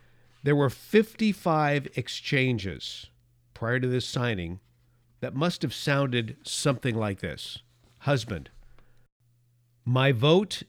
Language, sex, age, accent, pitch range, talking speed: English, male, 50-69, American, 120-150 Hz, 100 wpm